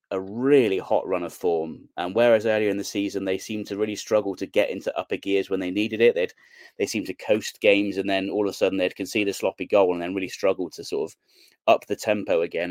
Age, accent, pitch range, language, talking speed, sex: 30-49, British, 95-120 Hz, English, 260 wpm, male